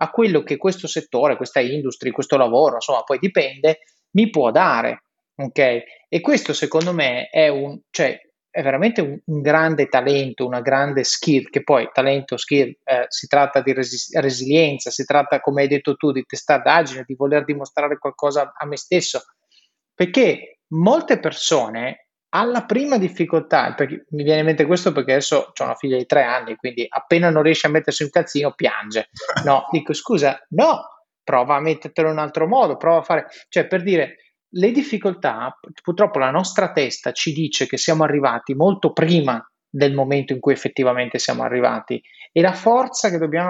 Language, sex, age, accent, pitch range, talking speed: Italian, male, 30-49, native, 135-175 Hz, 175 wpm